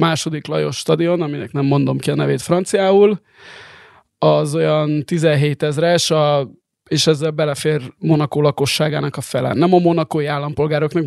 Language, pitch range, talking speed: Hungarian, 150-170 Hz, 135 wpm